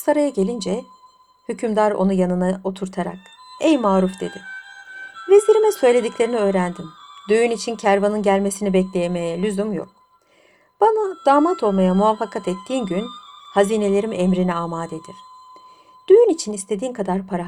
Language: Turkish